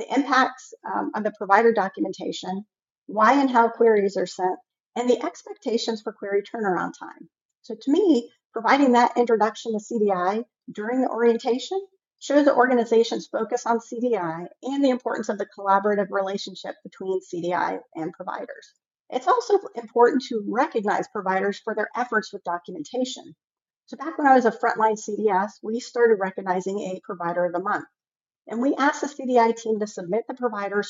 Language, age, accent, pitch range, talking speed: English, 50-69, American, 200-245 Hz, 165 wpm